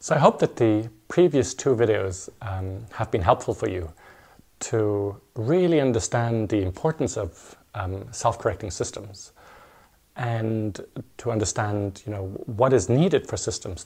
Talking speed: 135 wpm